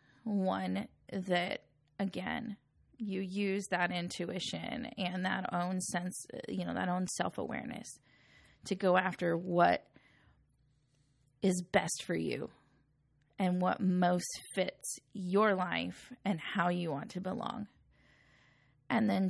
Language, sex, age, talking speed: English, female, 20-39, 120 wpm